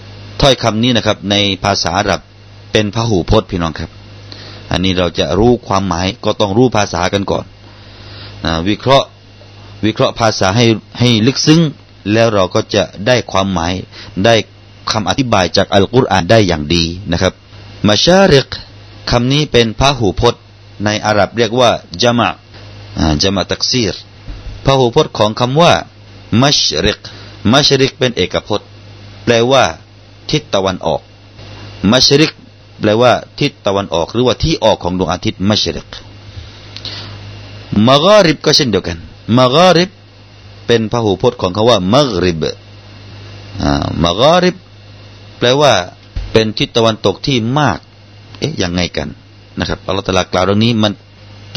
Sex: male